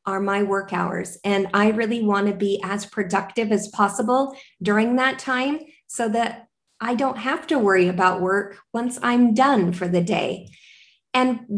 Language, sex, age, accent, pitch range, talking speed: English, female, 30-49, American, 195-235 Hz, 170 wpm